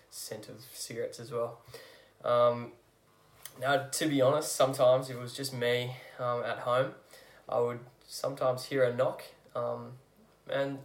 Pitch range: 120-145 Hz